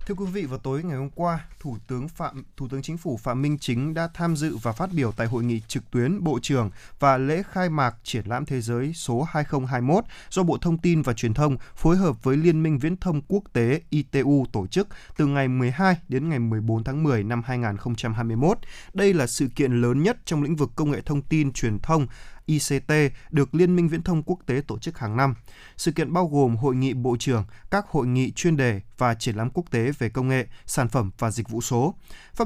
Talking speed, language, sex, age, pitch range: 225 wpm, Vietnamese, male, 20-39, 120-165 Hz